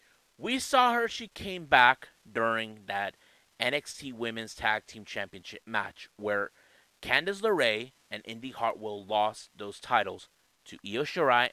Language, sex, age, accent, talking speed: English, male, 30-49, American, 135 wpm